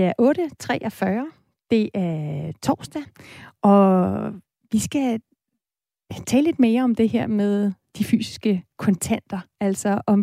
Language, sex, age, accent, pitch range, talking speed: Danish, female, 30-49, native, 195-235 Hz, 125 wpm